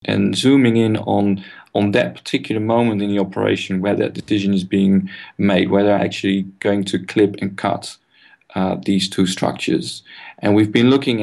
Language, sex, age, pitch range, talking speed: English, male, 40-59, 95-110 Hz, 175 wpm